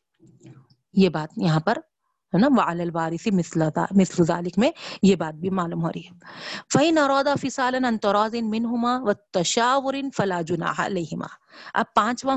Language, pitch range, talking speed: Urdu, 175-220 Hz, 135 wpm